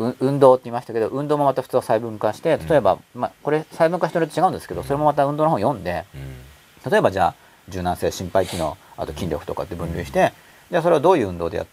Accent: native